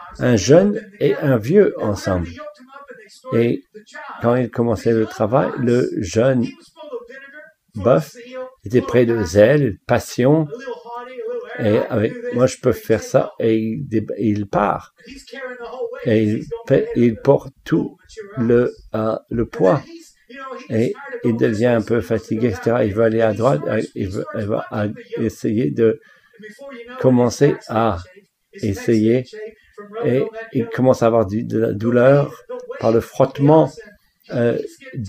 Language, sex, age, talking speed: English, male, 60-79, 125 wpm